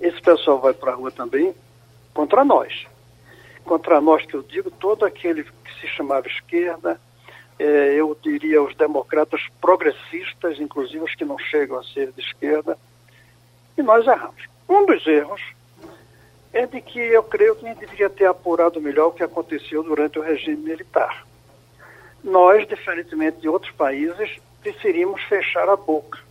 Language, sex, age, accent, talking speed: Portuguese, male, 60-79, Brazilian, 155 wpm